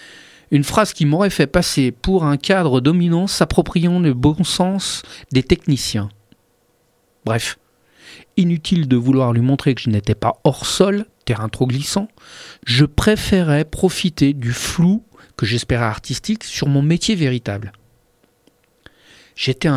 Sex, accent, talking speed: male, French, 135 wpm